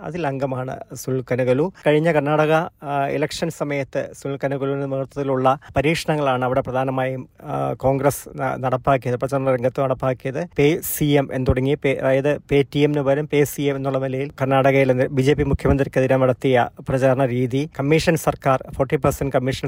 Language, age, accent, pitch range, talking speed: Malayalam, 20-39, native, 135-155 Hz, 105 wpm